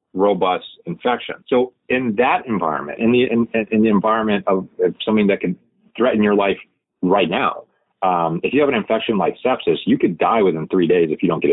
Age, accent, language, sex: 30-49, American, English, male